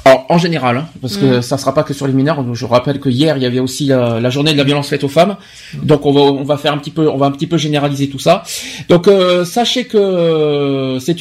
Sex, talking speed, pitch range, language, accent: male, 275 wpm, 145-205 Hz, French, French